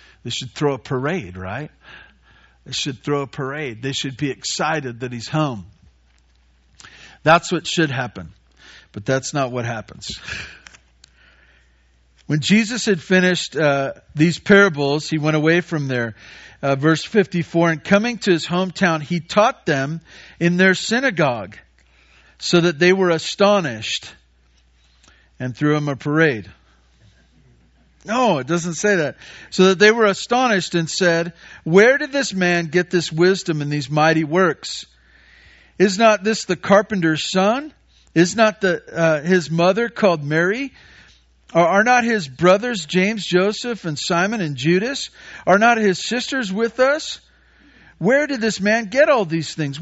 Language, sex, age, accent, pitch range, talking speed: English, male, 50-69, American, 140-205 Hz, 150 wpm